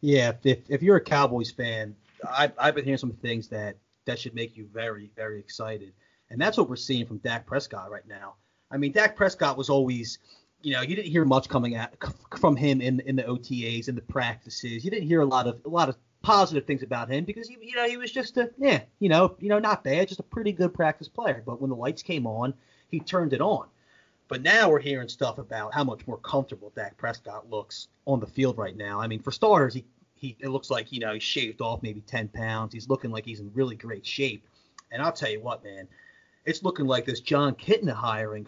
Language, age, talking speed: English, 30-49, 240 wpm